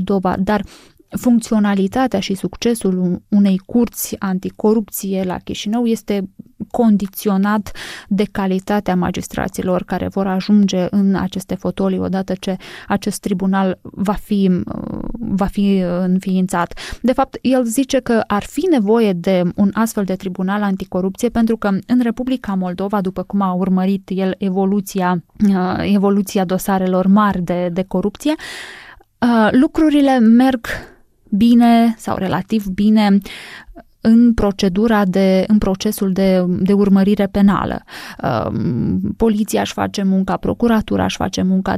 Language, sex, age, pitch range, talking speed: Romanian, female, 20-39, 190-225 Hz, 120 wpm